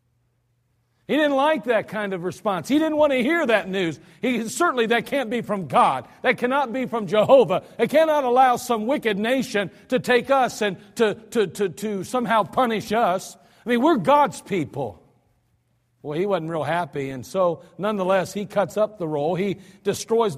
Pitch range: 150-210 Hz